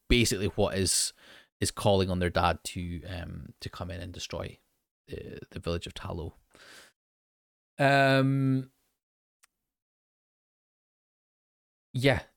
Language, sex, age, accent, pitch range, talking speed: English, male, 20-39, British, 90-105 Hz, 105 wpm